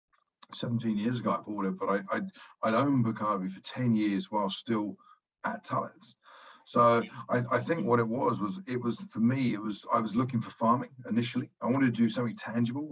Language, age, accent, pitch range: English, 50-69, British, 105-120 Hz